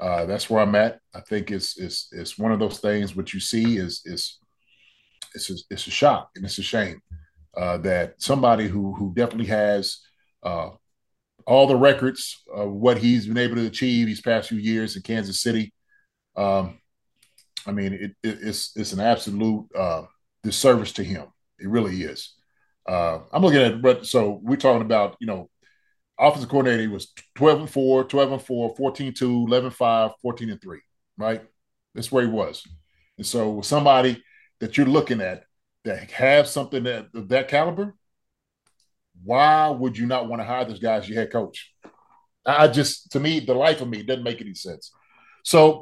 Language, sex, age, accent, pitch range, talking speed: English, male, 30-49, American, 105-135 Hz, 175 wpm